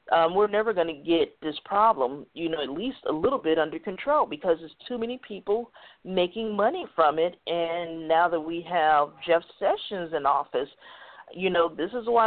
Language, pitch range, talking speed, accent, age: English, 165-220 Hz, 195 wpm, American, 40-59